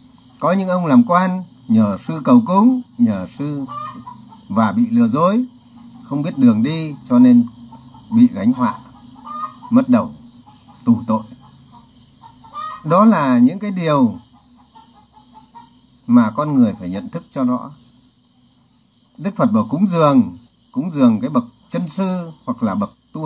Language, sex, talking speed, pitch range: Vietnamese, male, 145 wpm, 150-245 Hz